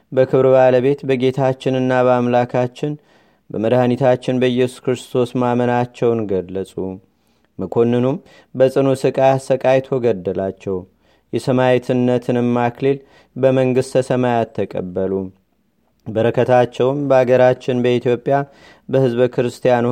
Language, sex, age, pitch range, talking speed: Amharic, male, 30-49, 120-135 Hz, 70 wpm